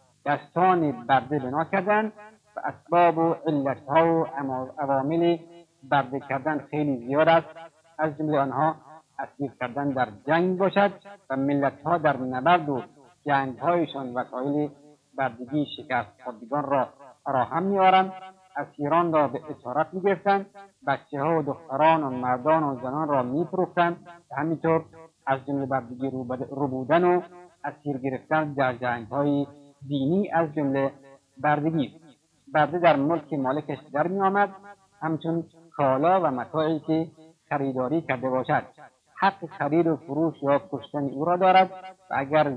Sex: male